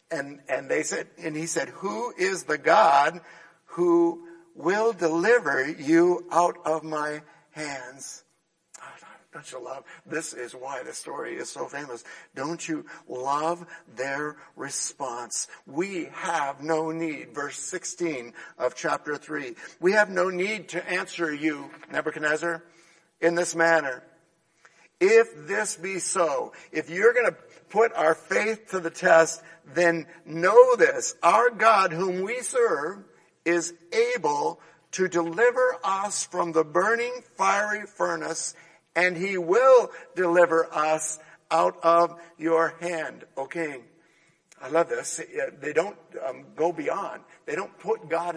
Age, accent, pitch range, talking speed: 60-79, American, 165-180 Hz, 135 wpm